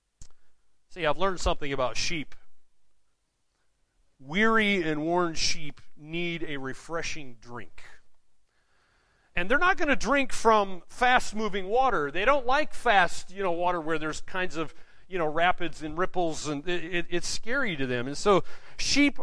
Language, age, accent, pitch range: English, 40-59, American, 140-195 Hz